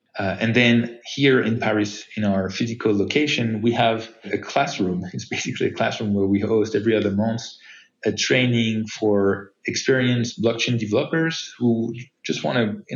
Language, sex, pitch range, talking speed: English, male, 100-120 Hz, 160 wpm